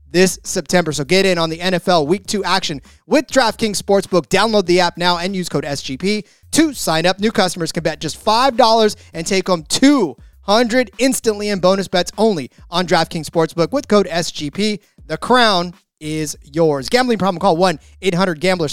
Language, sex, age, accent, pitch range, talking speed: English, male, 30-49, American, 160-215 Hz, 175 wpm